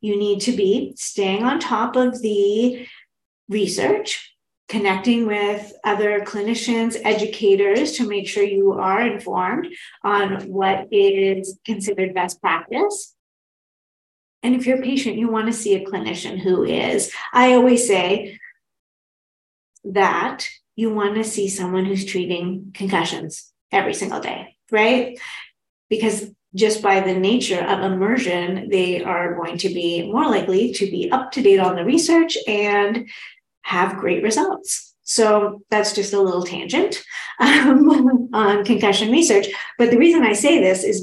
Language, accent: English, American